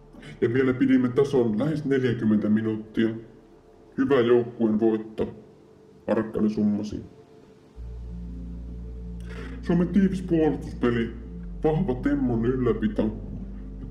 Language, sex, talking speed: Finnish, female, 80 wpm